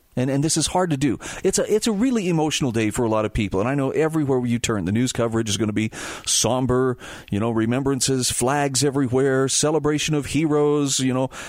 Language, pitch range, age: English, 110-140 Hz, 40-59